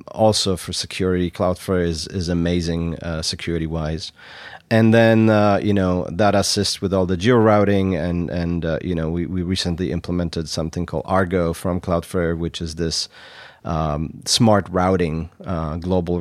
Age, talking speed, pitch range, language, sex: 30-49, 165 wpm, 85-95 Hz, English, male